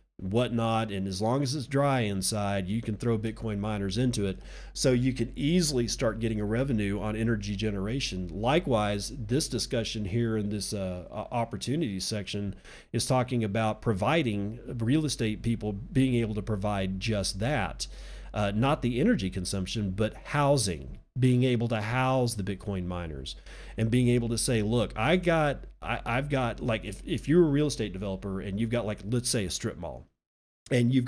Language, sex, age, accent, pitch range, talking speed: English, male, 40-59, American, 100-125 Hz, 180 wpm